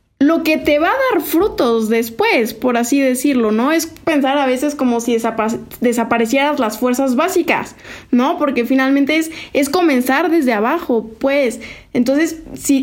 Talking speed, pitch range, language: 155 wpm, 235-290 Hz, Spanish